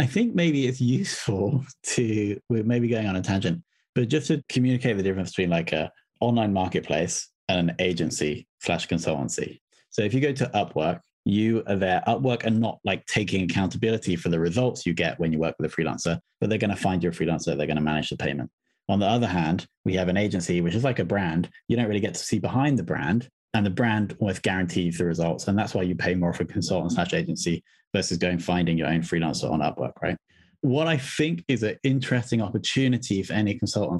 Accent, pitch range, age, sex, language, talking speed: British, 90-120 Hz, 20-39, male, English, 220 wpm